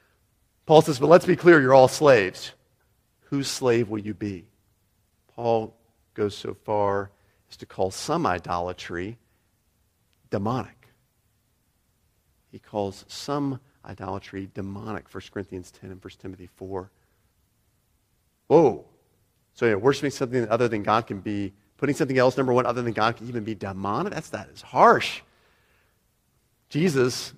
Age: 40-59